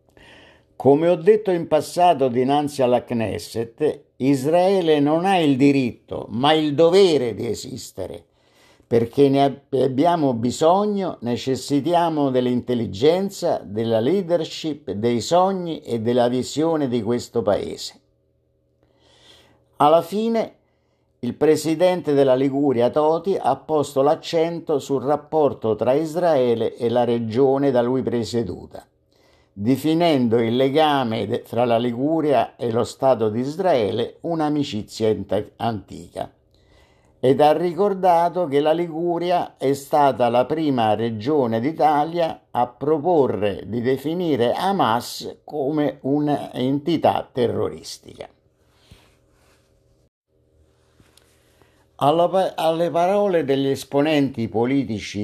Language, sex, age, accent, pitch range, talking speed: Italian, male, 50-69, native, 120-160 Hz, 100 wpm